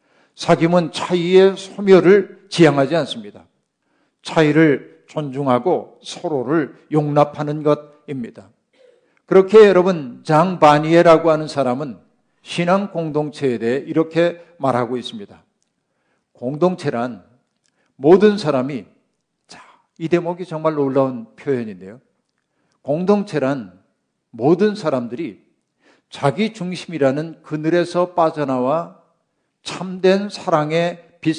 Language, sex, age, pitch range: Korean, male, 50-69, 135-175 Hz